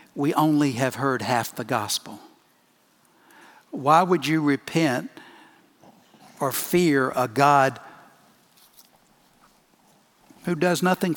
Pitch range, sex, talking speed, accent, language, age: 130-170 Hz, male, 95 wpm, American, English, 60-79